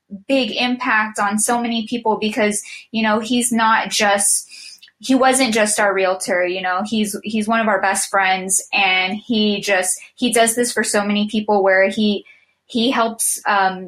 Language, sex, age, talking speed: English, female, 20-39, 175 wpm